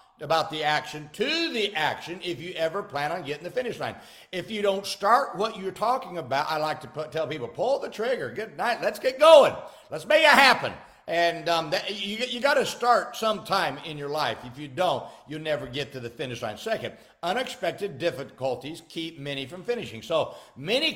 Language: English